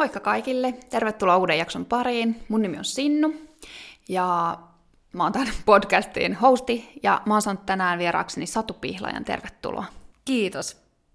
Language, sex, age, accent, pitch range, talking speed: Finnish, female, 20-39, native, 175-235 Hz, 135 wpm